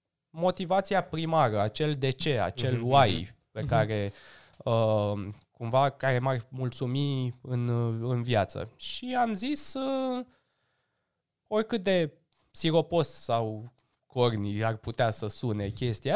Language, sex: Romanian, male